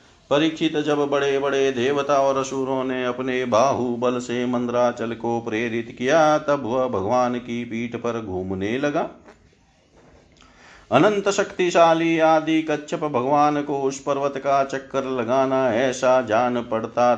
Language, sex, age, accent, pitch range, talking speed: Hindi, male, 50-69, native, 120-145 Hz, 130 wpm